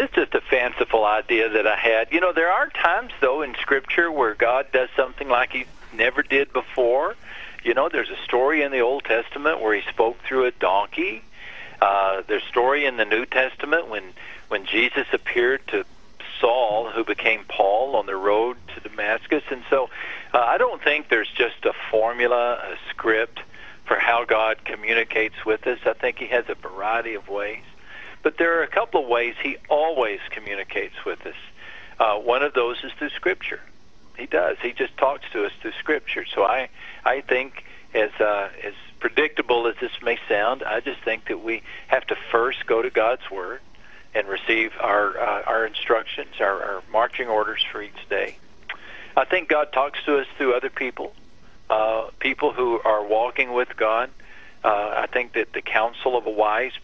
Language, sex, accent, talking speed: English, male, American, 190 wpm